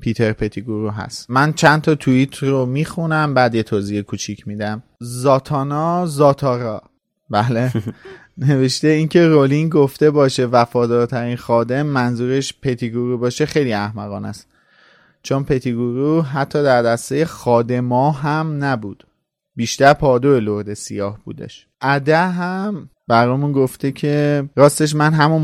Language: Persian